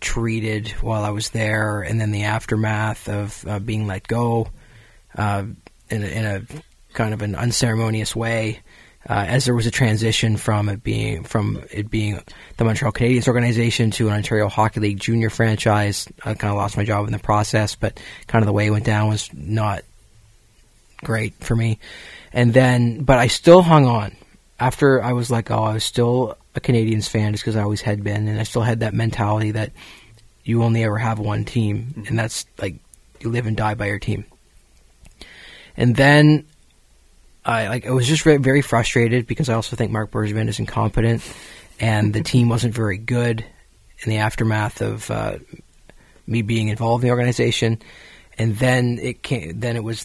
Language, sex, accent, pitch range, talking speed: English, male, American, 105-120 Hz, 185 wpm